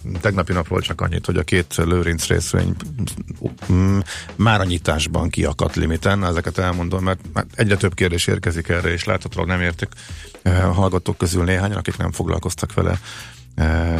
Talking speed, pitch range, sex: 155 wpm, 85-100 Hz, male